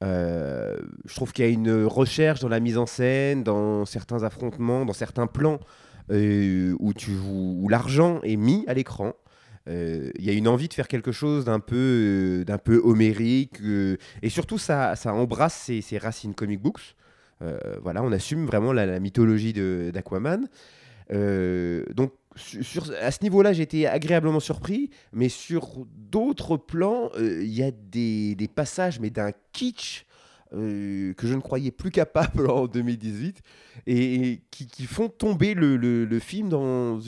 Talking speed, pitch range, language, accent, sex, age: 175 wpm, 110-150 Hz, French, French, male, 30-49